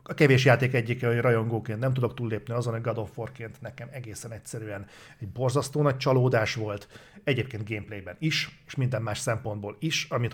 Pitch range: 115-135 Hz